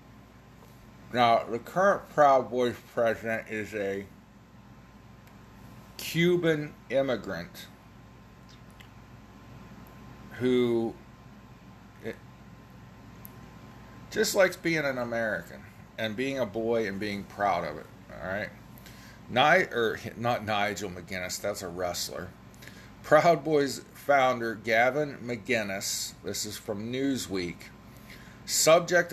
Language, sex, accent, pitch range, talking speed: English, male, American, 105-130 Hz, 90 wpm